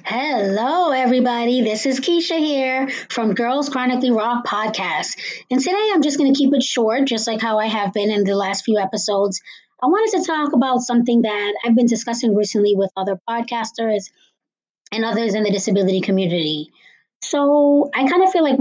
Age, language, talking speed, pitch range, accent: 20-39, English, 185 wpm, 195-235 Hz, American